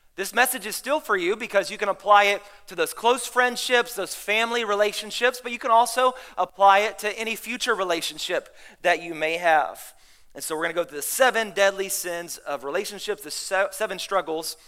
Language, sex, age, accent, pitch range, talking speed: English, male, 30-49, American, 185-235 Hz, 195 wpm